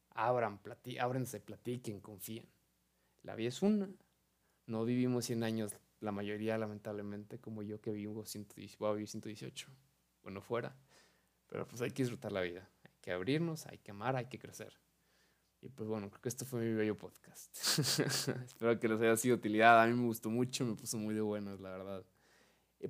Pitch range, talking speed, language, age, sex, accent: 105-135 Hz, 180 wpm, Spanish, 20-39, male, Mexican